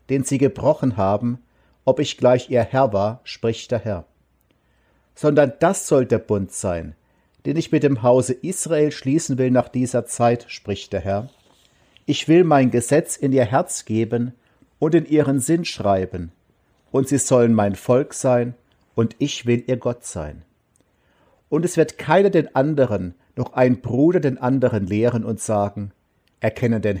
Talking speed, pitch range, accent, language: 165 wpm, 100-135 Hz, German, German